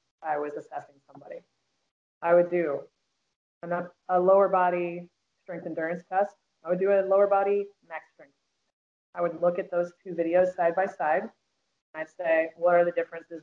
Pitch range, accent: 150-180 Hz, American